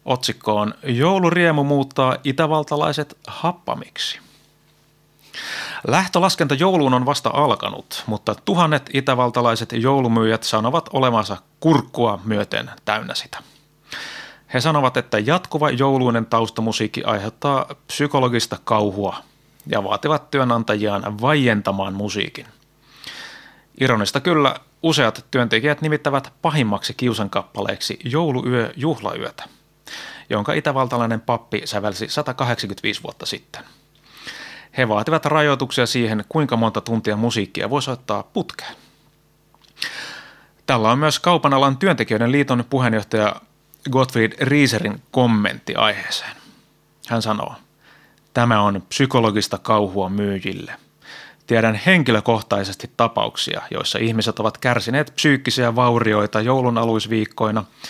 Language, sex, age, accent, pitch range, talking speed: Finnish, male, 30-49, native, 110-140 Hz, 95 wpm